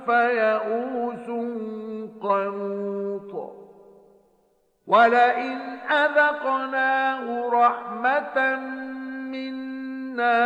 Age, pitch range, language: 50-69, 220-255 Hz, Arabic